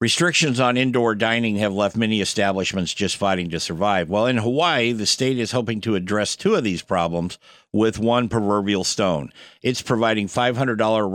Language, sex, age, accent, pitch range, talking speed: English, male, 60-79, American, 100-130 Hz, 170 wpm